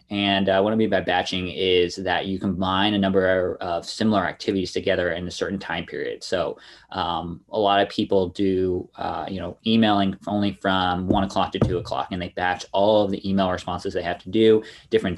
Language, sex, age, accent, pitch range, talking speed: English, male, 20-39, American, 90-100 Hz, 215 wpm